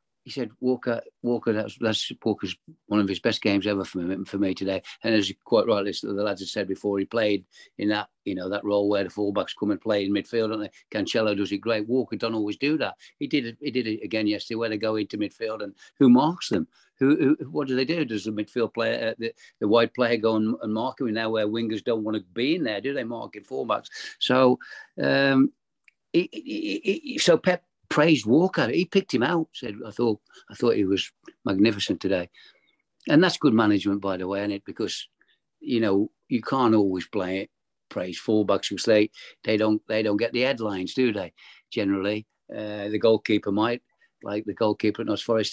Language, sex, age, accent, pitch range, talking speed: English, male, 50-69, British, 105-125 Hz, 220 wpm